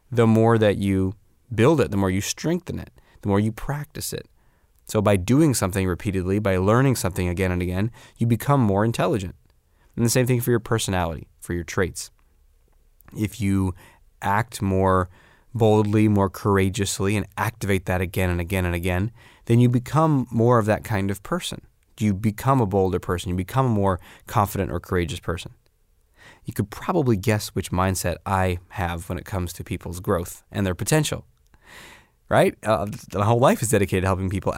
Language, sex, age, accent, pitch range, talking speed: English, male, 20-39, American, 95-115 Hz, 180 wpm